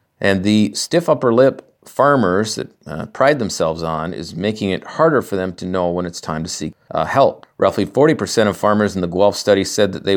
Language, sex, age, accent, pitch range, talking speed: English, male, 40-59, American, 85-105 Hz, 220 wpm